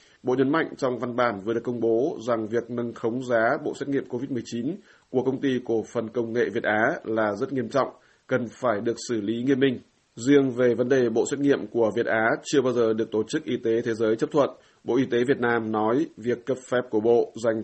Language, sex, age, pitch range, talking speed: Vietnamese, male, 20-39, 110-125 Hz, 250 wpm